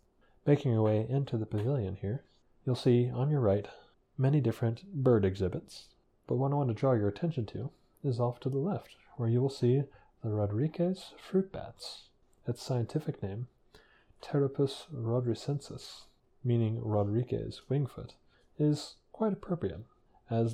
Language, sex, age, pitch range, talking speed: English, male, 30-49, 110-140 Hz, 150 wpm